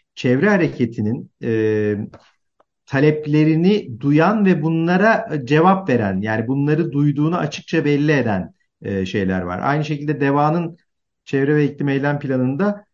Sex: male